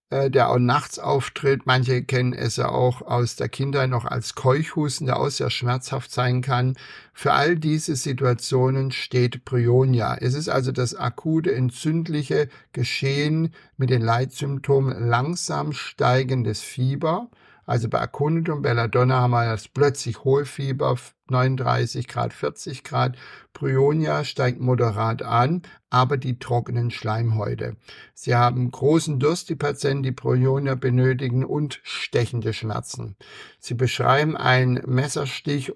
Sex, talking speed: male, 130 wpm